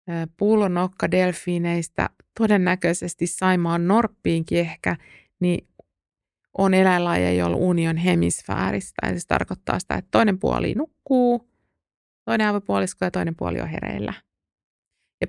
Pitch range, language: 155-185 Hz, Finnish